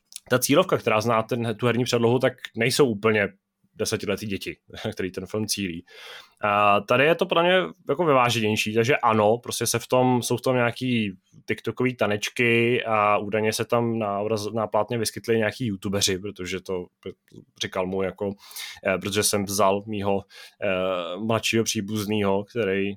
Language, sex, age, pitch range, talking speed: Czech, male, 20-39, 105-125 Hz, 150 wpm